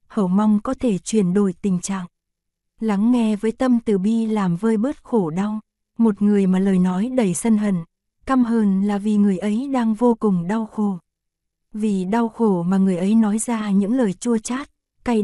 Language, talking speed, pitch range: Vietnamese, 200 wpm, 195-235 Hz